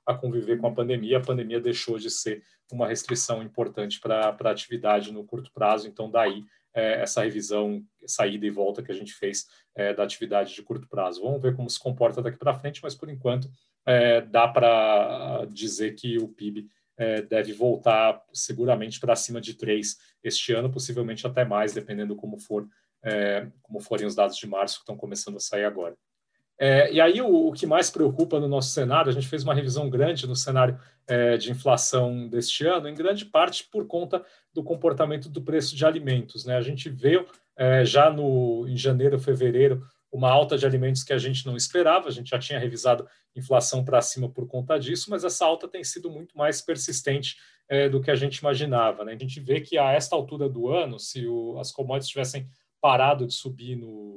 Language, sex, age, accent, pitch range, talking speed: Portuguese, male, 40-59, Brazilian, 115-140 Hz, 185 wpm